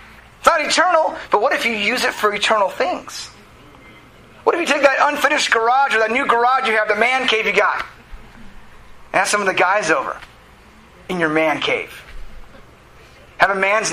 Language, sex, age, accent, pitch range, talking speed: English, male, 30-49, American, 175-265 Hz, 190 wpm